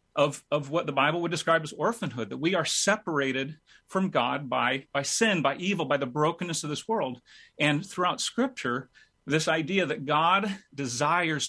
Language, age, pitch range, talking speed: English, 40-59, 145-185 Hz, 180 wpm